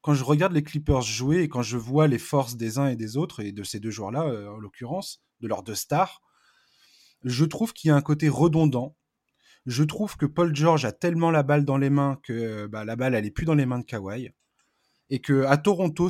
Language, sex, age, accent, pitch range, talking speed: French, male, 20-39, French, 120-160 Hz, 230 wpm